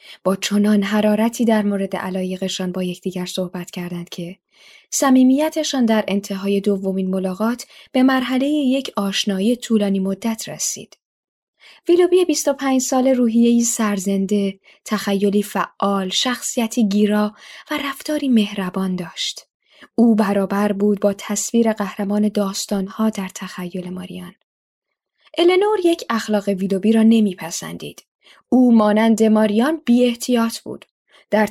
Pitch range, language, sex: 195-240 Hz, Persian, female